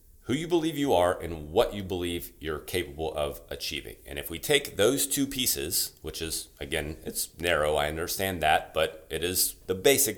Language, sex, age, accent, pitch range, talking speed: English, male, 30-49, American, 80-110 Hz, 195 wpm